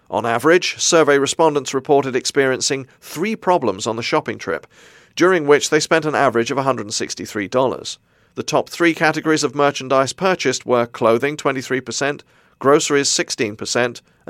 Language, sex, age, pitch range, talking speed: English, male, 40-59, 125-155 Hz, 135 wpm